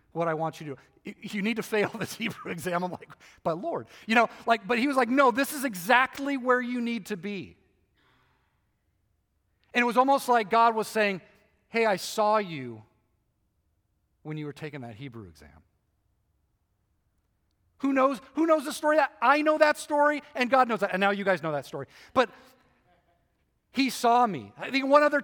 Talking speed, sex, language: 195 wpm, male, English